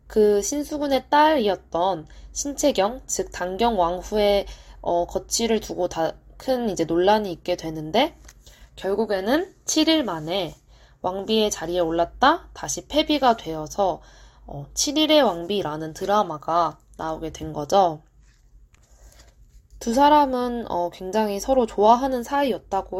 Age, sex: 20-39, female